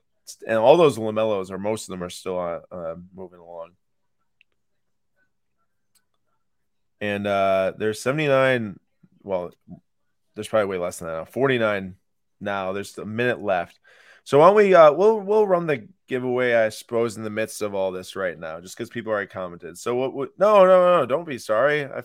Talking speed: 190 wpm